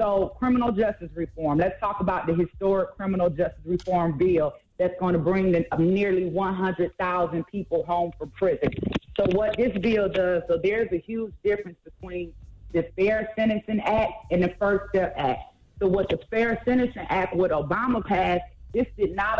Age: 30-49